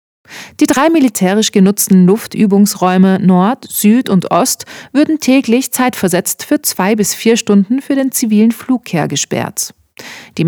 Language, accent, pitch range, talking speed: German, German, 185-250 Hz, 130 wpm